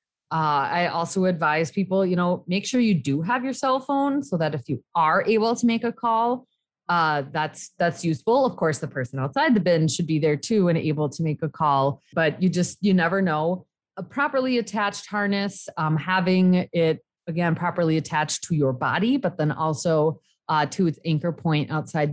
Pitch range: 150-195 Hz